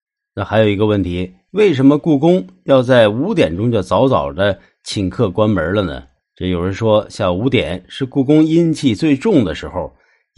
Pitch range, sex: 100-150 Hz, male